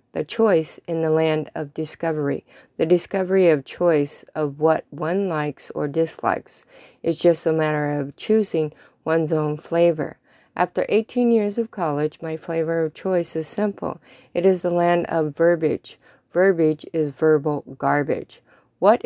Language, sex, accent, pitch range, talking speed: English, female, American, 155-180 Hz, 150 wpm